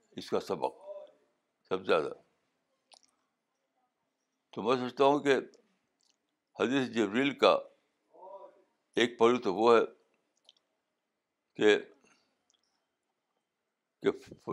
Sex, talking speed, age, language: male, 85 wpm, 60-79, Urdu